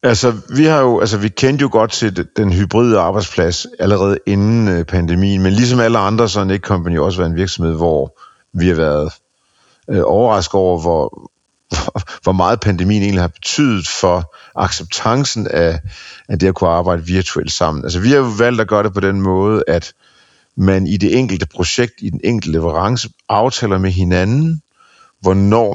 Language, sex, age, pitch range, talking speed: Danish, male, 50-69, 85-110 Hz, 175 wpm